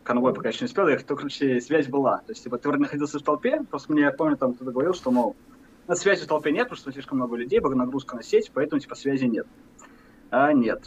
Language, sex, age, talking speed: Russian, male, 20-39, 250 wpm